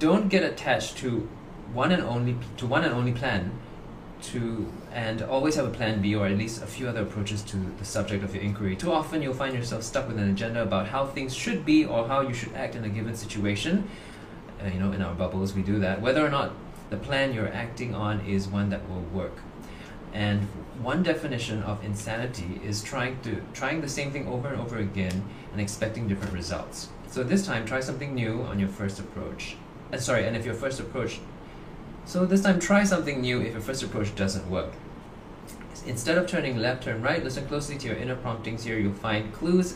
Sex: male